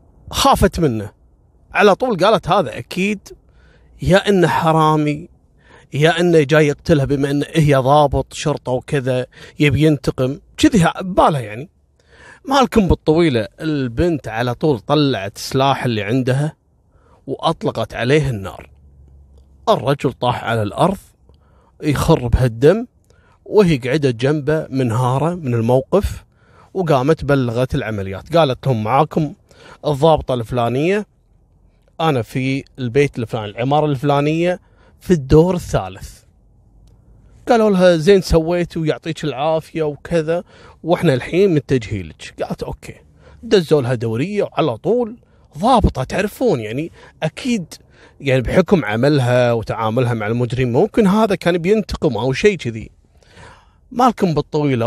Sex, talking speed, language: male, 115 wpm, Arabic